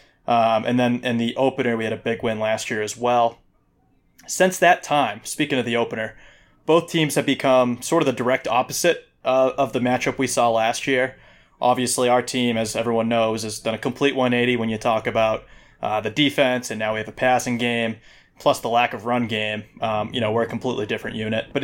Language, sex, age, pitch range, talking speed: English, male, 20-39, 115-130 Hz, 220 wpm